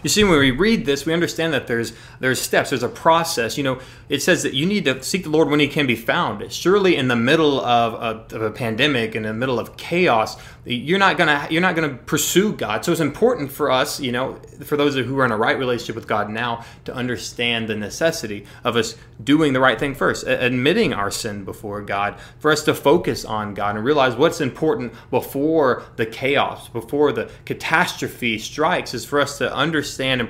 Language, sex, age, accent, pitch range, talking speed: English, male, 30-49, American, 115-150 Hz, 220 wpm